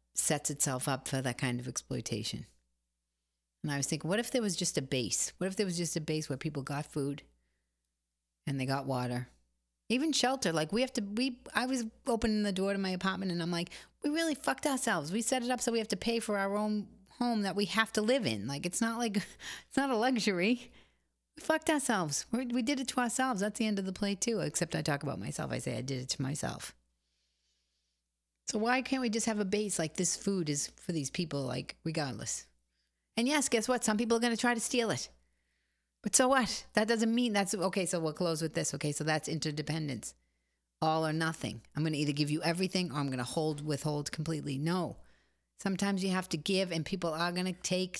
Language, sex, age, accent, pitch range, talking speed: English, female, 30-49, American, 130-210 Hz, 235 wpm